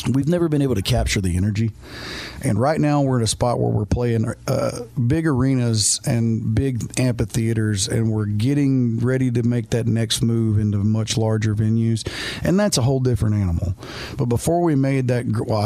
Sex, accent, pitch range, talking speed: male, American, 110-125 Hz, 190 wpm